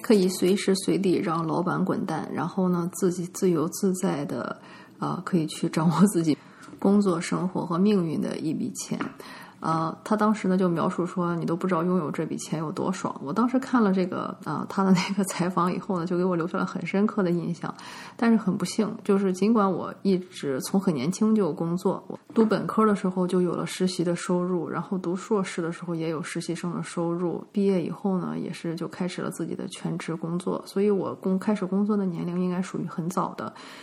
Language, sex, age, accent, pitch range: English, female, 30-49, Chinese, 170-200 Hz